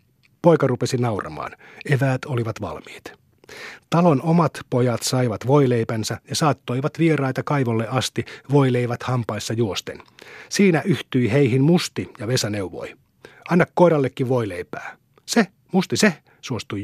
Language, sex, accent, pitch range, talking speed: Finnish, male, native, 120-140 Hz, 120 wpm